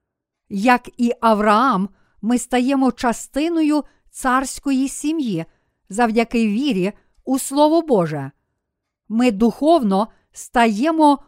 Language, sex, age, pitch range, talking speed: Ukrainian, female, 50-69, 210-275 Hz, 85 wpm